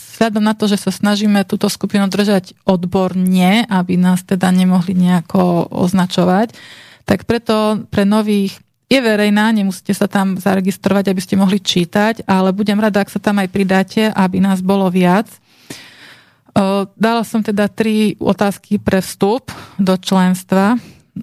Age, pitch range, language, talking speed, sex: 30-49, 190-215 Hz, Slovak, 145 wpm, female